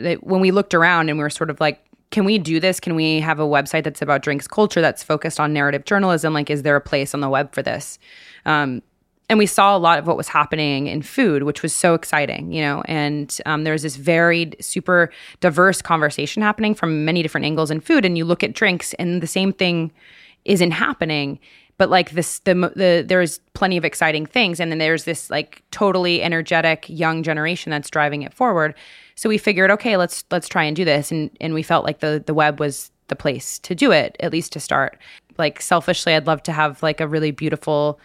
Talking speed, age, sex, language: 225 wpm, 20-39, female, English